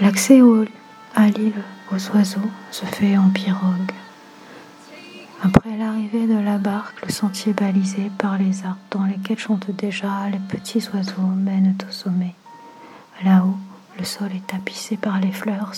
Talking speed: 145 wpm